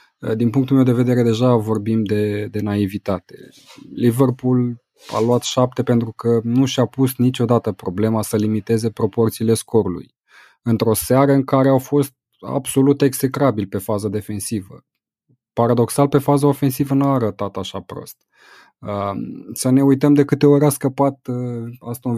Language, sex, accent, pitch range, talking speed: Romanian, male, native, 110-130 Hz, 145 wpm